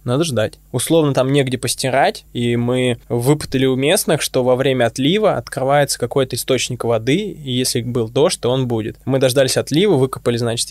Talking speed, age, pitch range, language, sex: 175 wpm, 20-39, 125-140 Hz, Russian, male